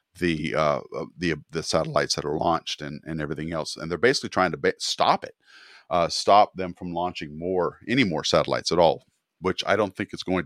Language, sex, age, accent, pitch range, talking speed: English, male, 40-59, American, 85-105 Hz, 210 wpm